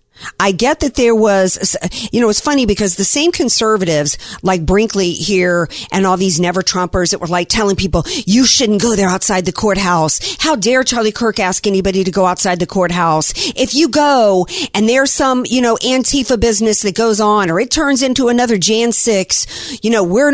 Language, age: English, 50-69